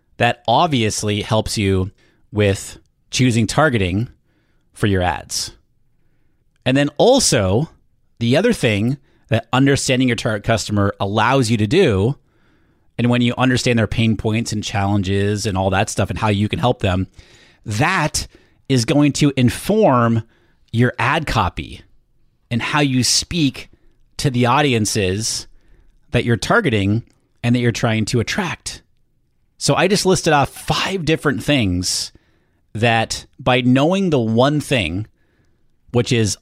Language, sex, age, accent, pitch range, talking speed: English, male, 30-49, American, 105-135 Hz, 140 wpm